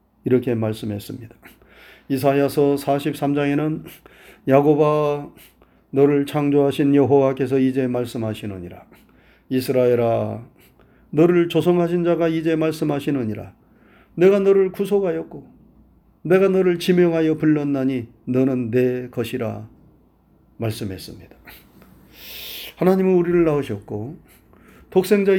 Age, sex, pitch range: 40-59, male, 130-170 Hz